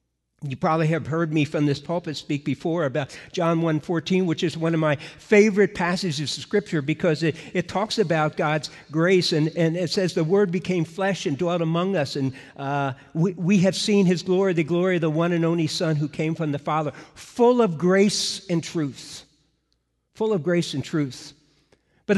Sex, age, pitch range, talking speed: male, 60-79, 160-200 Hz, 200 wpm